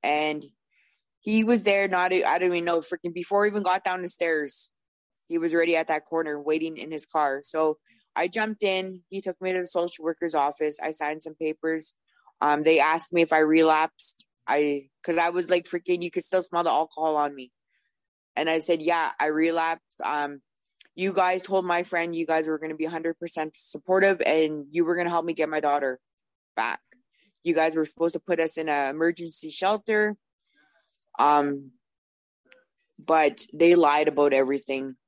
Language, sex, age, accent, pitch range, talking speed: English, female, 20-39, American, 155-185 Hz, 190 wpm